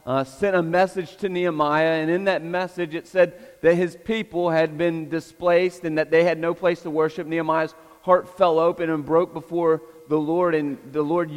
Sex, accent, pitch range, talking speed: male, American, 160-180 Hz, 200 wpm